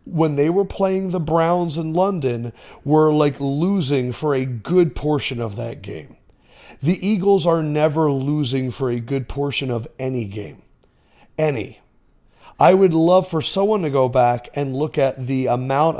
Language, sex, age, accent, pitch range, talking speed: English, male, 40-59, American, 125-160 Hz, 165 wpm